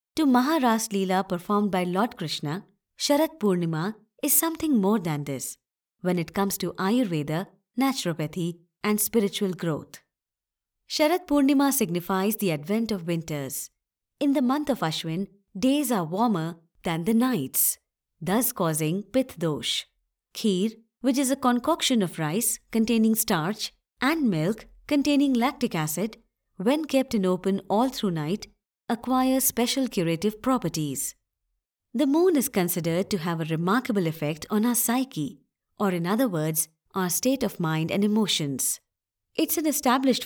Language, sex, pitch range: Hindi, male, 170-250 Hz